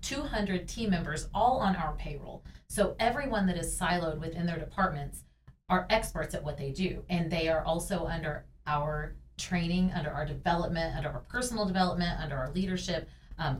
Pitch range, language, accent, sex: 155-185 Hz, English, American, female